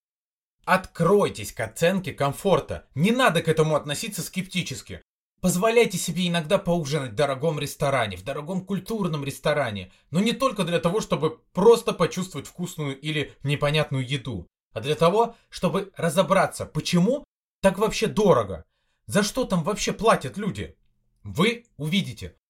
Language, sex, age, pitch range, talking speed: Russian, male, 30-49, 140-190 Hz, 135 wpm